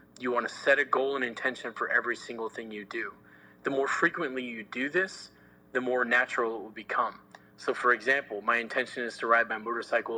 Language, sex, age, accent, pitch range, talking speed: English, male, 30-49, American, 115-140 Hz, 210 wpm